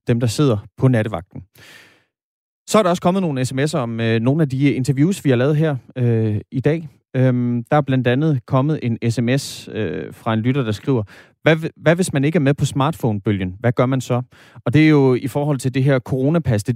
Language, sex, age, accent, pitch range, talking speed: Danish, male, 30-49, native, 110-145 Hz, 225 wpm